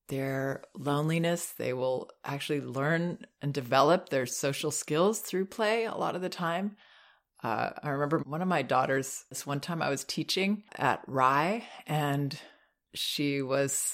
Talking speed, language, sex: 155 wpm, English, female